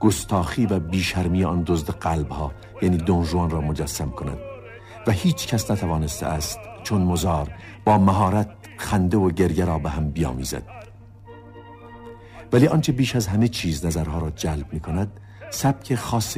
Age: 50-69